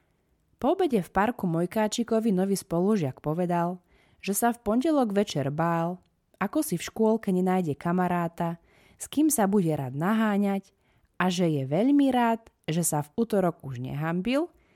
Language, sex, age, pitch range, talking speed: Slovak, female, 20-39, 150-220 Hz, 150 wpm